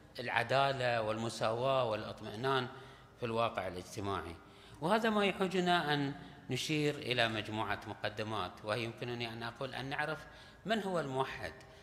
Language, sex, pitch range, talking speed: Arabic, male, 110-150 Hz, 115 wpm